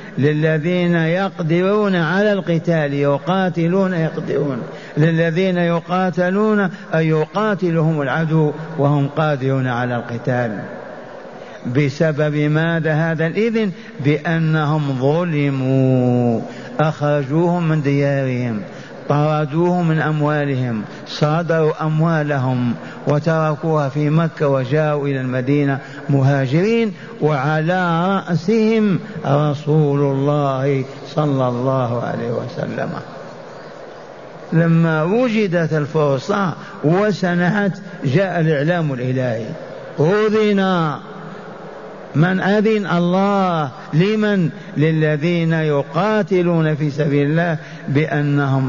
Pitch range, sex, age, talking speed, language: 145-180 Hz, male, 50-69, 75 wpm, Arabic